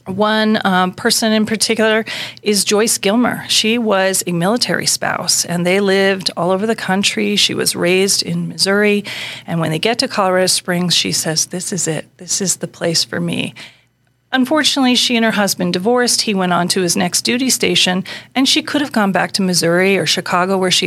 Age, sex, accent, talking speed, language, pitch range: 40-59, female, American, 200 wpm, English, 185-225 Hz